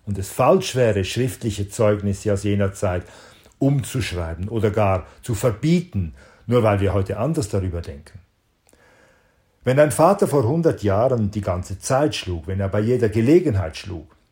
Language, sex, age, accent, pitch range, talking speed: German, male, 50-69, German, 95-125 Hz, 155 wpm